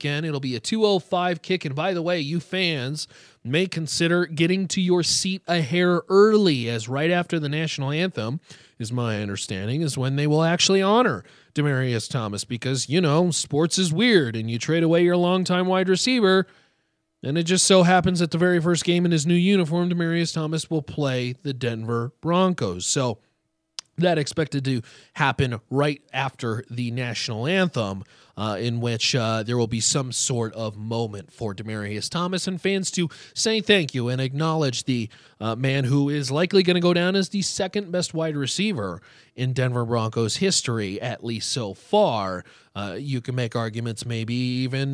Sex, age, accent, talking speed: male, 30-49, American, 180 wpm